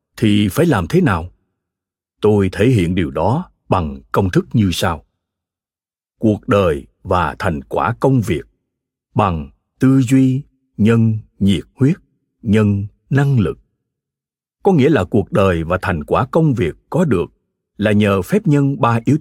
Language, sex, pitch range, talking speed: Vietnamese, male, 100-140 Hz, 155 wpm